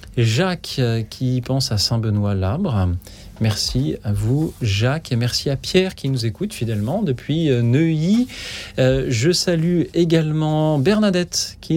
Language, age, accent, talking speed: French, 40-59, French, 140 wpm